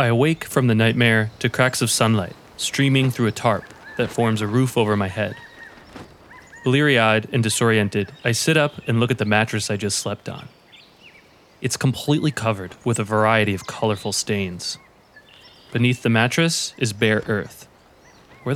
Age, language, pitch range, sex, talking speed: 20-39, English, 110-140 Hz, male, 170 wpm